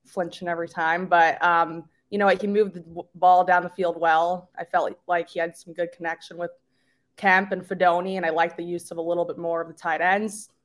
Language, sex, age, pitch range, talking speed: English, female, 20-39, 165-180 Hz, 235 wpm